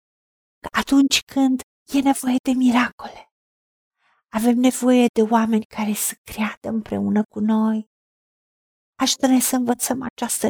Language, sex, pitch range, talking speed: Romanian, female, 235-275 Hz, 120 wpm